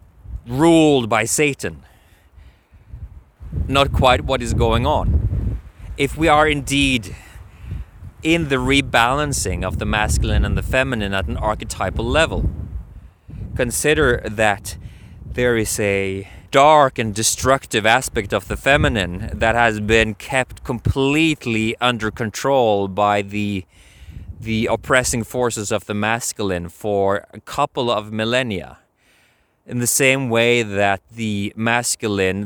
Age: 30-49